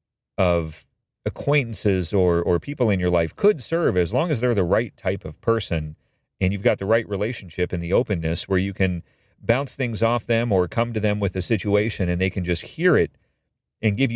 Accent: American